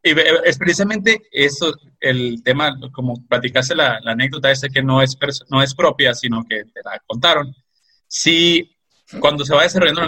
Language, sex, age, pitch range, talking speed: Spanish, male, 30-49, 135-175 Hz, 190 wpm